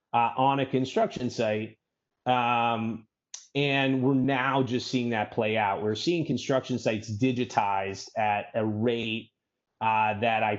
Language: English